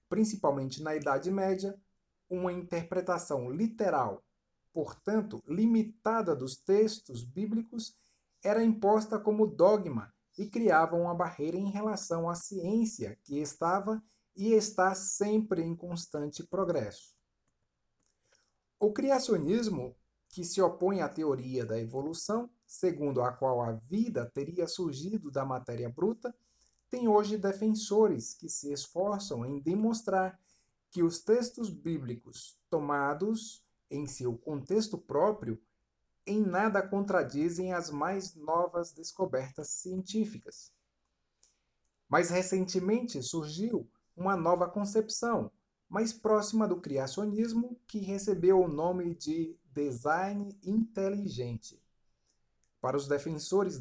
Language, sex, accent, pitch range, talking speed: Portuguese, male, Brazilian, 150-215 Hz, 105 wpm